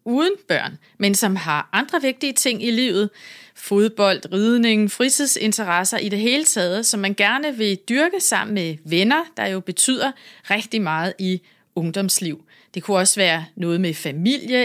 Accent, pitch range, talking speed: native, 185-260 Hz, 160 wpm